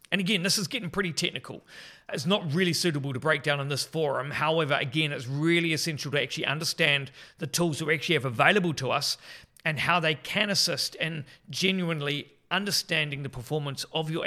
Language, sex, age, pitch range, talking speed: English, male, 40-59, 140-170 Hz, 195 wpm